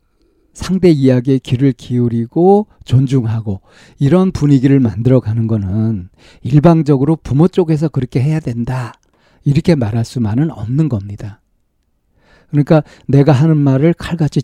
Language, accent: Korean, native